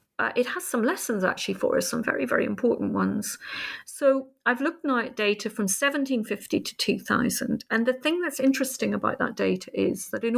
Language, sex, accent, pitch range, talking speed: English, female, British, 205-255 Hz, 195 wpm